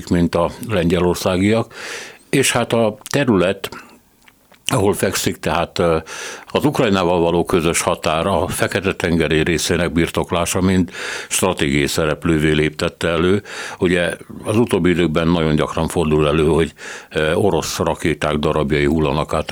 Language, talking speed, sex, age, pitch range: Hungarian, 120 wpm, male, 60-79, 80-95 Hz